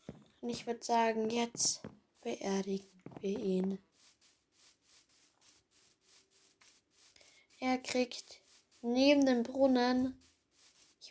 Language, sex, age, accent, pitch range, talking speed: German, female, 20-39, German, 205-245 Hz, 75 wpm